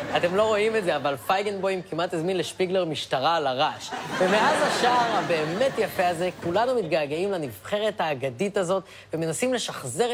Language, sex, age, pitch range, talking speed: Hebrew, female, 30-49, 165-235 Hz, 150 wpm